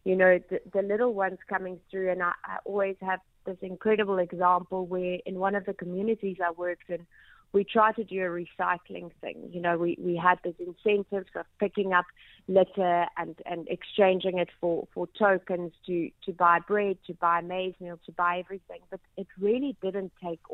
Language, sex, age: English, female, 30-49